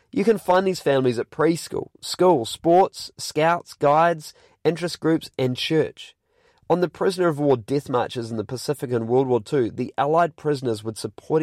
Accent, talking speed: Australian, 180 wpm